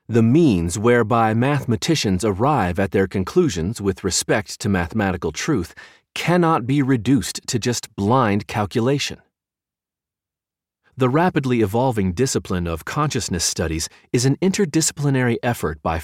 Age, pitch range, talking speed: 40-59, 95-140 Hz, 120 wpm